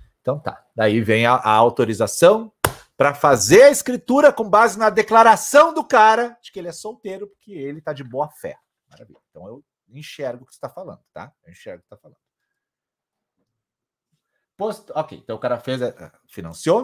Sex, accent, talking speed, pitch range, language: male, Brazilian, 185 wpm, 120-180 Hz, Portuguese